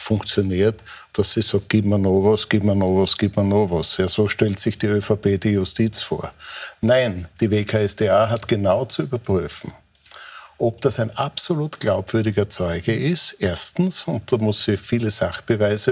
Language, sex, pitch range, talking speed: German, male, 100-130 Hz, 175 wpm